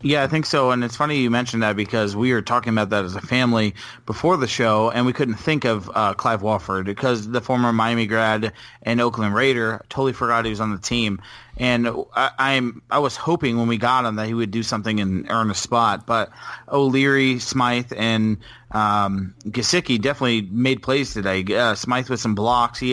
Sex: male